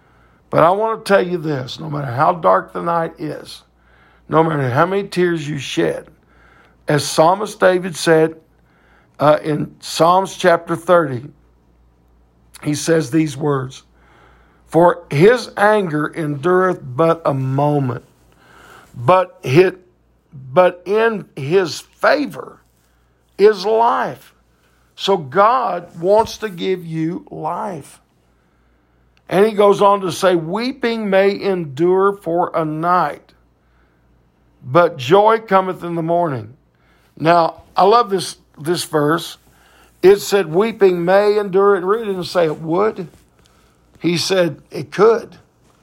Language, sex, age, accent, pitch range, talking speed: English, male, 60-79, American, 140-190 Hz, 120 wpm